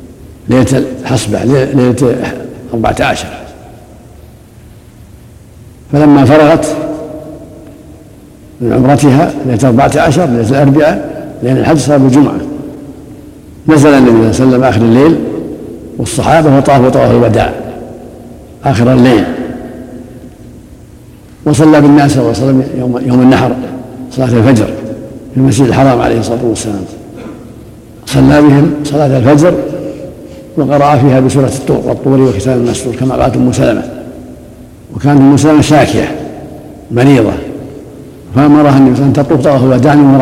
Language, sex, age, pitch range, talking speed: Arabic, male, 60-79, 125-145 Hz, 100 wpm